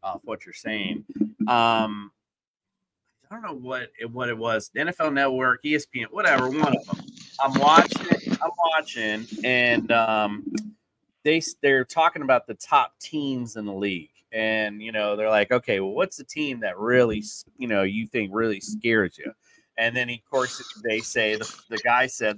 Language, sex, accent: English, male, American